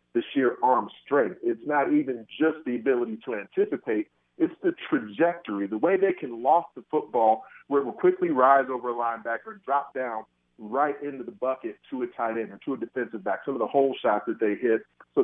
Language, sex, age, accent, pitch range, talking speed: English, male, 40-59, American, 125-155 Hz, 215 wpm